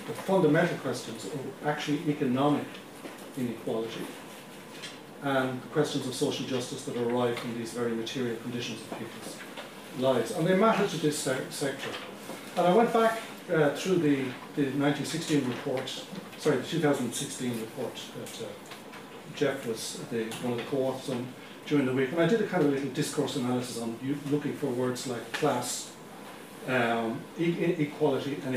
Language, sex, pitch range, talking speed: English, male, 125-150 Hz, 160 wpm